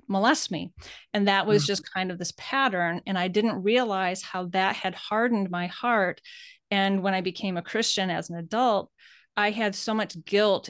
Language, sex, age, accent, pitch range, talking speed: English, female, 30-49, American, 180-210 Hz, 190 wpm